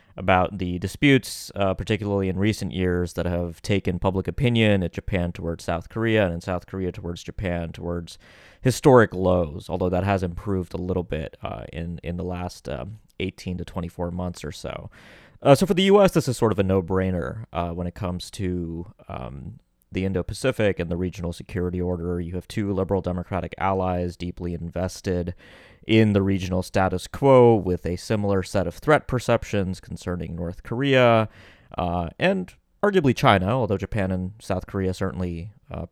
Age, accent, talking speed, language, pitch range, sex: 20-39, American, 175 wpm, English, 90-105 Hz, male